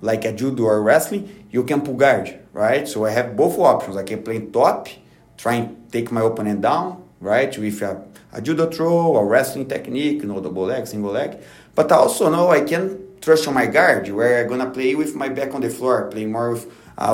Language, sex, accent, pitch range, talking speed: English, male, Brazilian, 110-140 Hz, 230 wpm